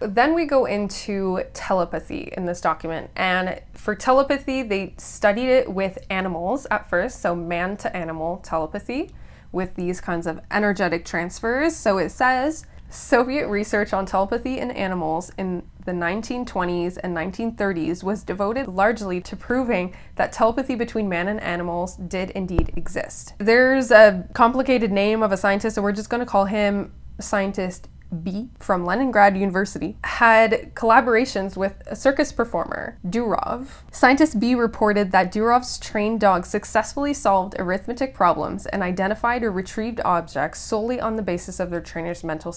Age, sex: 20-39, female